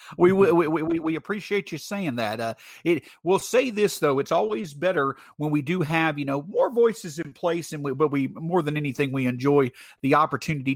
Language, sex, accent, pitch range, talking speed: English, male, American, 145-195 Hz, 210 wpm